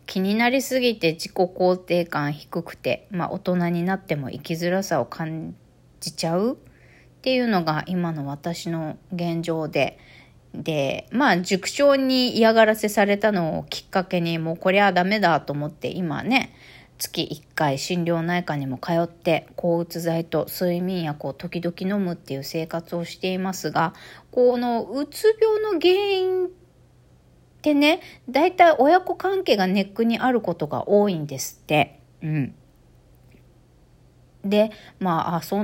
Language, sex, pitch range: Japanese, female, 165-220 Hz